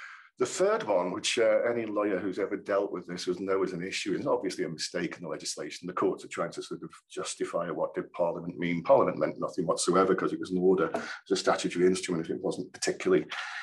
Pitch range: 95-130 Hz